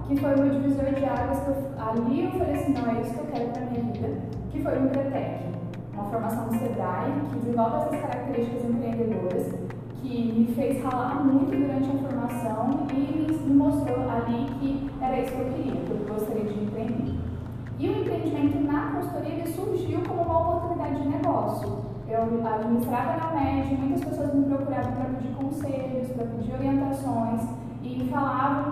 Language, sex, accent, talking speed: Portuguese, female, Brazilian, 180 wpm